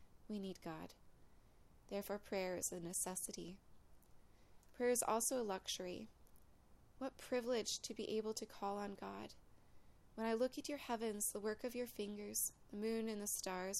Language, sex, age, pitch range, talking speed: English, female, 20-39, 180-215 Hz, 165 wpm